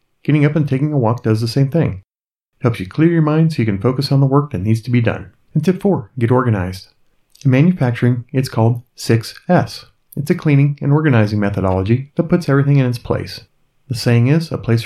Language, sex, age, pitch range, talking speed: English, male, 30-49, 115-155 Hz, 220 wpm